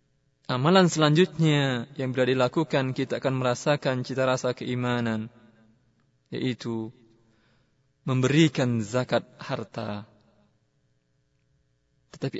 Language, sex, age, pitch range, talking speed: Indonesian, male, 20-39, 130-180 Hz, 75 wpm